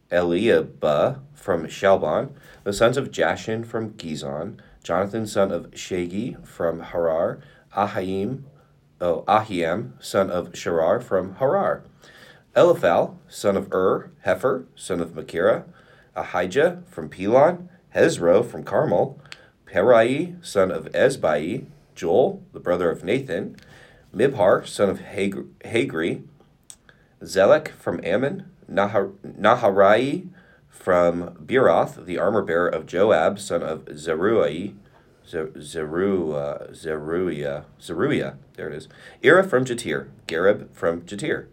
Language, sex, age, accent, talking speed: English, male, 30-49, American, 110 wpm